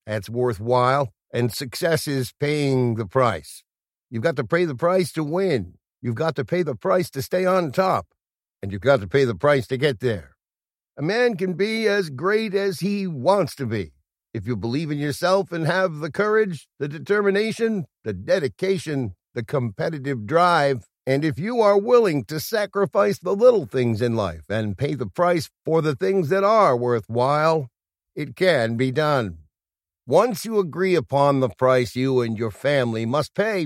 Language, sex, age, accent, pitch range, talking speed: English, male, 60-79, American, 120-185 Hz, 180 wpm